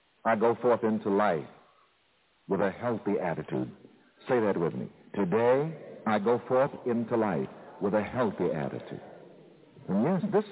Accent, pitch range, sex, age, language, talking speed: American, 160-210 Hz, male, 60-79, English, 150 wpm